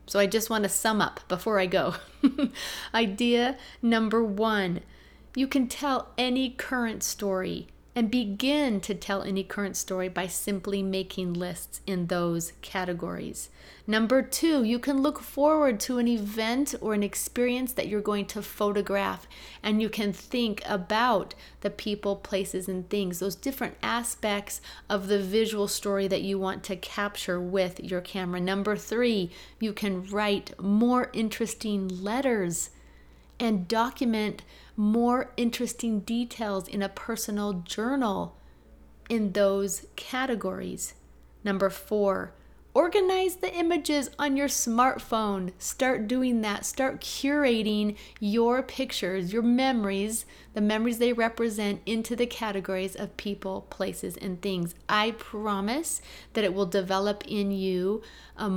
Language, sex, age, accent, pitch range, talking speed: English, female, 30-49, American, 195-235 Hz, 135 wpm